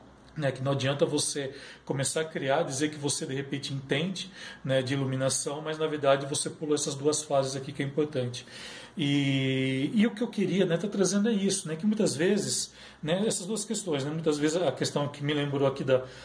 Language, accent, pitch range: Portuguese, Brazilian, 140-185 Hz